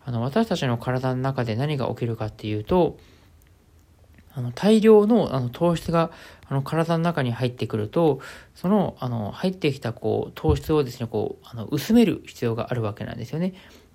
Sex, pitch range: male, 120-165 Hz